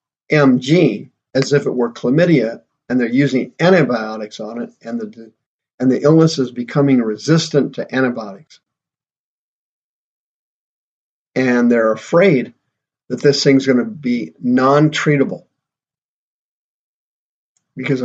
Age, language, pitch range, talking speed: 50-69, English, 125-145 Hz, 110 wpm